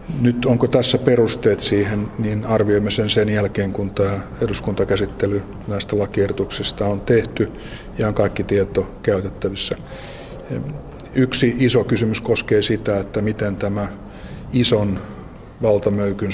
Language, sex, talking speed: Finnish, male, 120 wpm